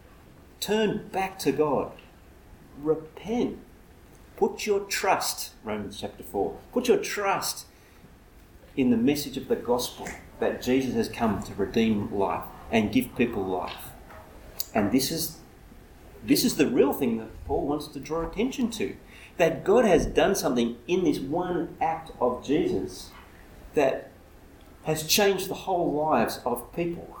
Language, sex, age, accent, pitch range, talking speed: English, male, 40-59, Australian, 100-165 Hz, 145 wpm